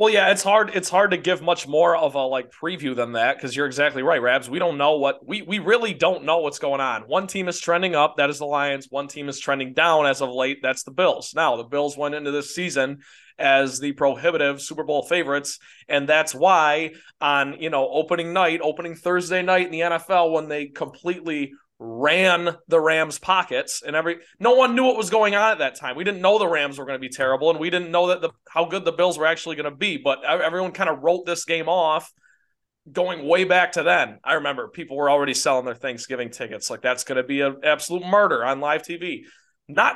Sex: male